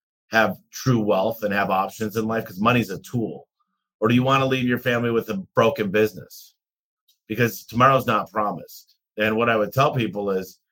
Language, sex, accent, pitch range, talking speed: English, male, American, 100-125 Hz, 195 wpm